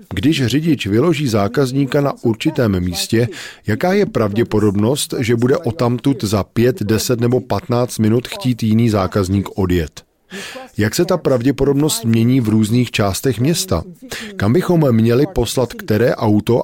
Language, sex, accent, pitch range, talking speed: Czech, male, native, 105-140 Hz, 140 wpm